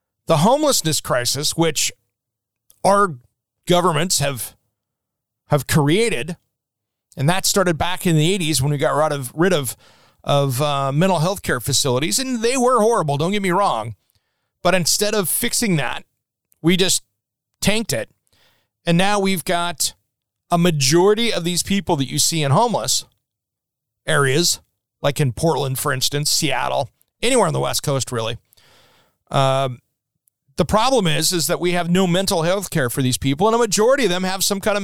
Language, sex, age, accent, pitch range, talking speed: English, male, 40-59, American, 130-190 Hz, 170 wpm